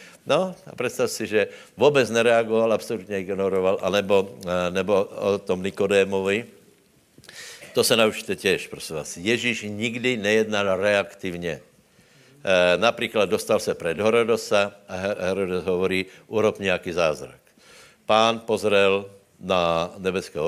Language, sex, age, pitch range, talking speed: Slovak, male, 60-79, 90-110 Hz, 120 wpm